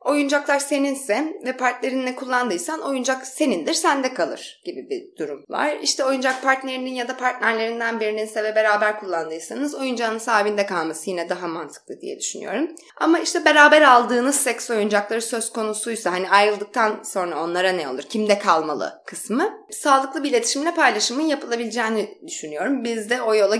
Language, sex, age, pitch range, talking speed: Turkish, female, 20-39, 215-275 Hz, 145 wpm